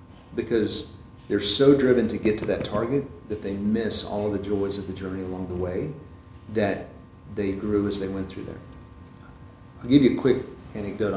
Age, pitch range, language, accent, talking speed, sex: 40-59, 95-110 Hz, English, American, 195 wpm, male